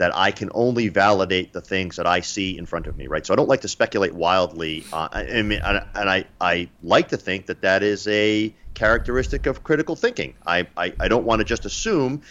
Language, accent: English, American